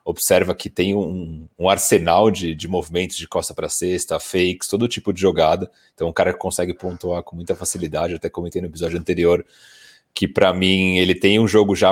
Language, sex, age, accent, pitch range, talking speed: Portuguese, male, 30-49, Brazilian, 85-100 Hz, 200 wpm